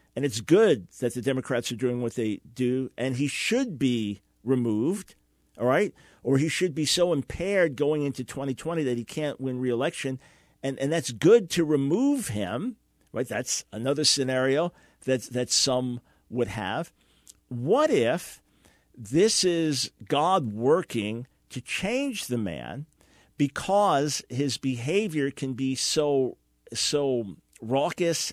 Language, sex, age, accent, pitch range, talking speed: English, male, 50-69, American, 120-150 Hz, 140 wpm